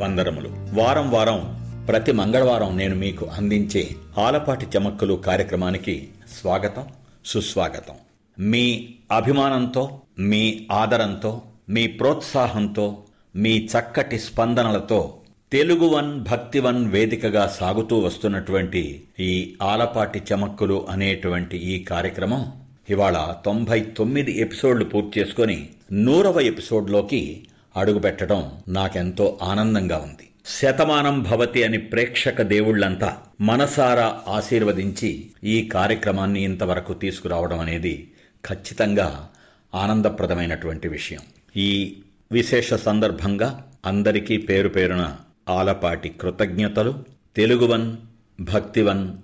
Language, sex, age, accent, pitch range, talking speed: Telugu, male, 50-69, native, 95-115 Hz, 85 wpm